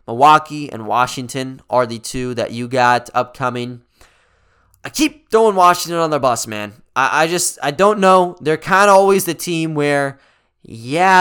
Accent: American